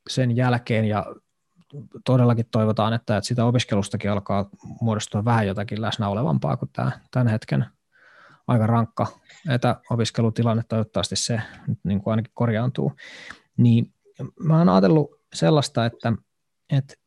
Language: Finnish